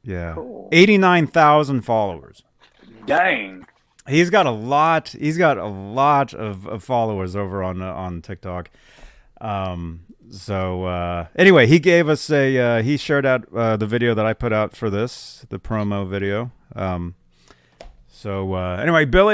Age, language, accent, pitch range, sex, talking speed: 30-49, English, American, 95-140 Hz, male, 155 wpm